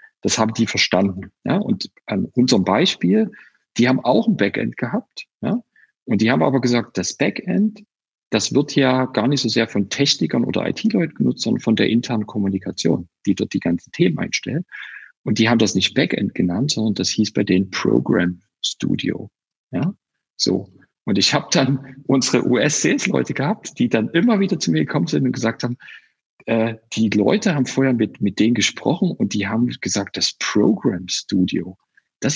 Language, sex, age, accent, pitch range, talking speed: German, male, 50-69, German, 105-160 Hz, 180 wpm